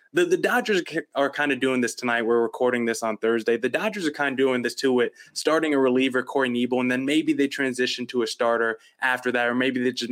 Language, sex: English, male